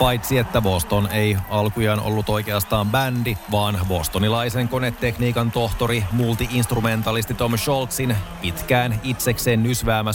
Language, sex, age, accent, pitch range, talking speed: Finnish, male, 30-49, native, 105-130 Hz, 105 wpm